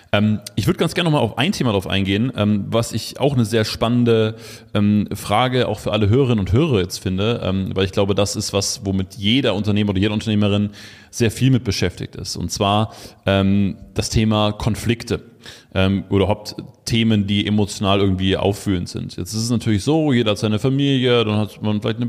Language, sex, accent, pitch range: German, male, German, 105-120 Hz